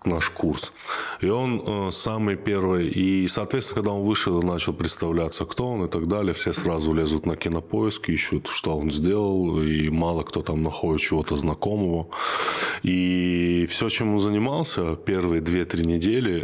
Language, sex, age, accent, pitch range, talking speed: Russian, male, 20-39, native, 85-110 Hz, 155 wpm